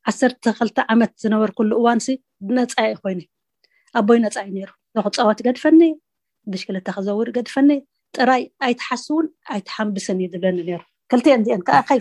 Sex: female